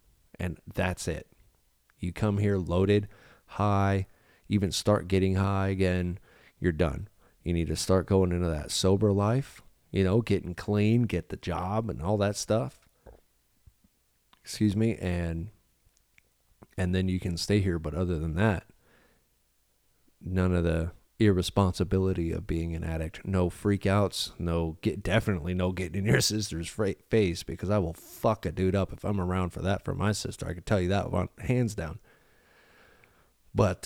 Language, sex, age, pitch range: English, male, 30-49, 85-105 Hz